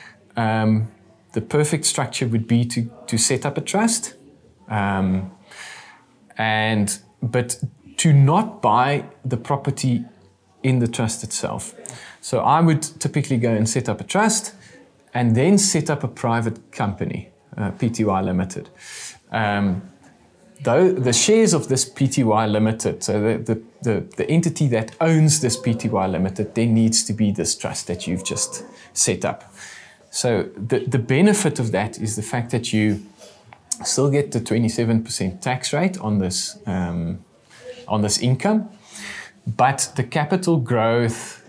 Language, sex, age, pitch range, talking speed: English, male, 20-39, 105-130 Hz, 145 wpm